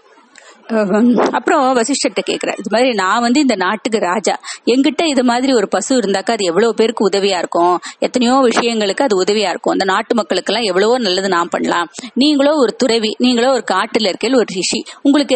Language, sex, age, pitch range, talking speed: Tamil, female, 30-49, 200-275 Hz, 170 wpm